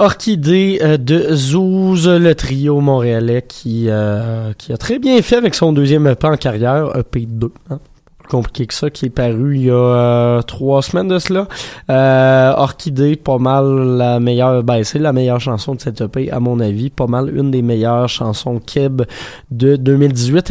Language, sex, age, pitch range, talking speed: French, male, 20-39, 120-155 Hz, 180 wpm